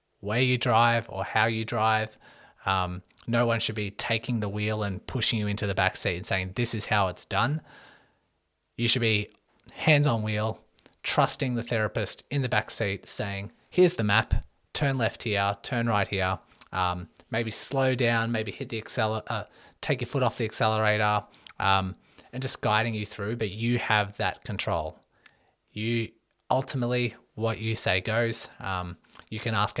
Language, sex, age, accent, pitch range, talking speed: English, male, 30-49, Australian, 100-120 Hz, 175 wpm